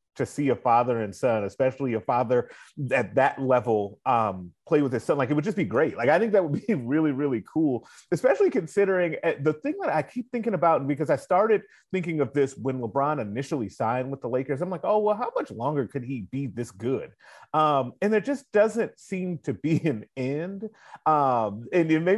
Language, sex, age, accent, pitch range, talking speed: English, male, 30-49, American, 135-180 Hz, 220 wpm